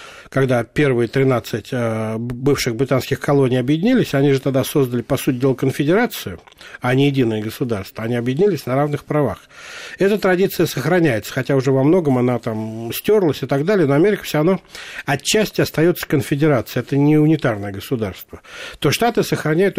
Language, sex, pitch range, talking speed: Russian, male, 135-165 Hz, 155 wpm